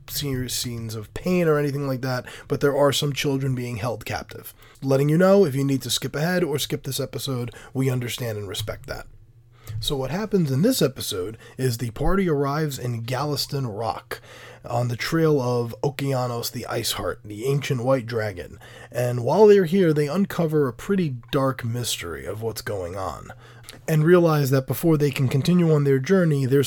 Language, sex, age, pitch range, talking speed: English, male, 20-39, 120-150 Hz, 185 wpm